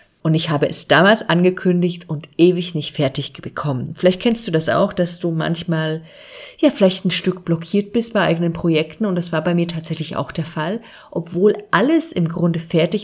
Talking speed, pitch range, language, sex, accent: 195 wpm, 160-195 Hz, German, female, German